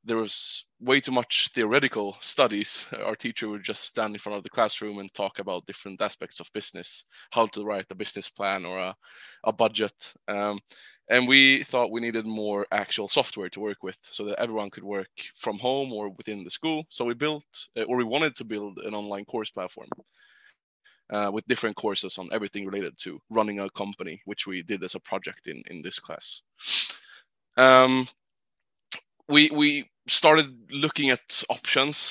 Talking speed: 180 wpm